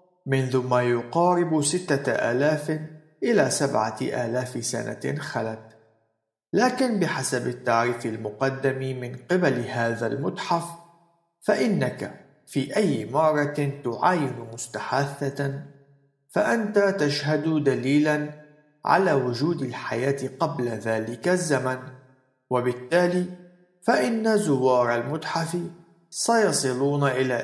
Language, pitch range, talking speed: Arabic, 125-170 Hz, 85 wpm